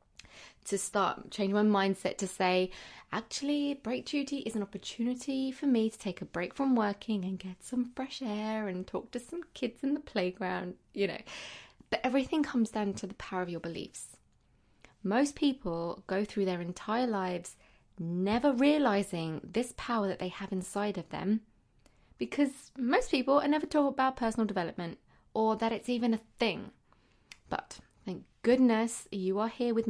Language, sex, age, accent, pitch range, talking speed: English, female, 20-39, British, 190-250 Hz, 170 wpm